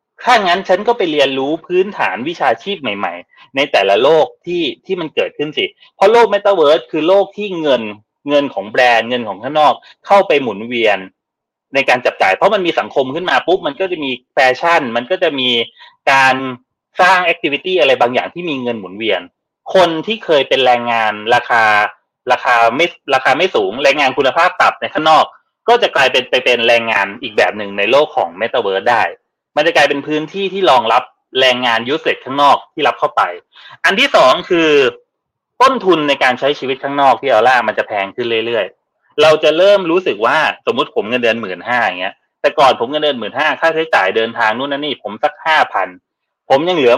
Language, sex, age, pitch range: Thai, male, 30-49, 130-205 Hz